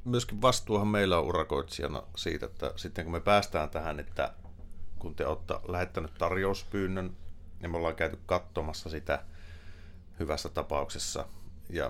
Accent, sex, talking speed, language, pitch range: native, male, 135 wpm, Finnish, 80-90 Hz